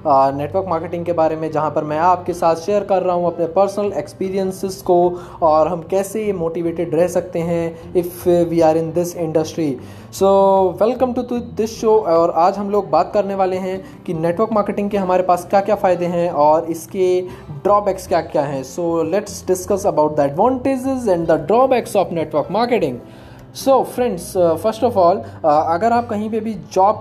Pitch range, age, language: 160-200 Hz, 20-39, Hindi